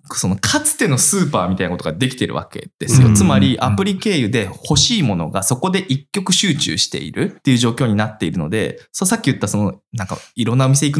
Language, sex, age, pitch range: Japanese, male, 20-39, 120-190 Hz